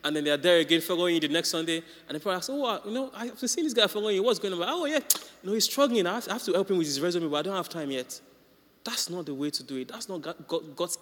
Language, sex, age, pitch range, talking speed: English, male, 30-49, 140-190 Hz, 340 wpm